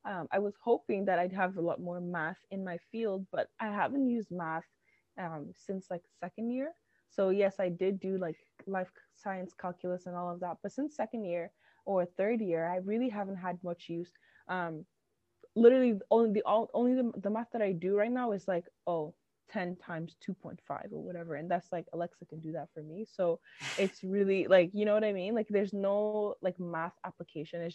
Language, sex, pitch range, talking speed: English, female, 170-210 Hz, 210 wpm